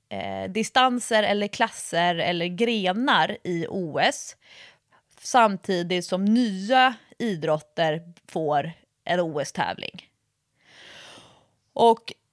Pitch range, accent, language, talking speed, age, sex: 175-230 Hz, Swedish, English, 75 wpm, 20-39, female